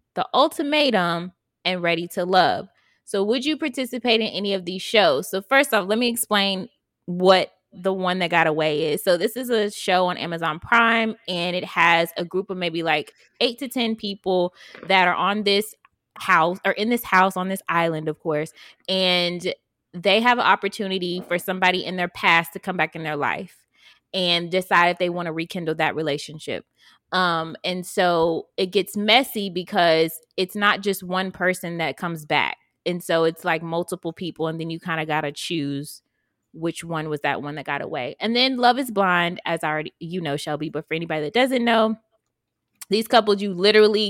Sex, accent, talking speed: female, American, 195 wpm